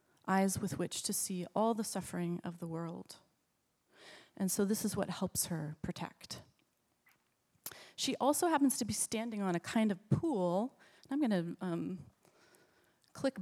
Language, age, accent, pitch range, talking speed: English, 30-49, American, 170-200 Hz, 150 wpm